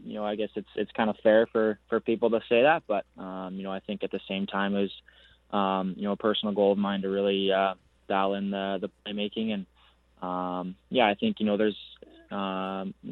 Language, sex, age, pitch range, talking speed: English, male, 20-39, 95-105 Hz, 240 wpm